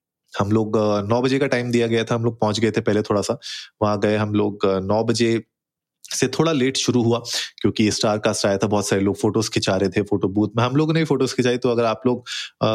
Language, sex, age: Hindi, male, 20-39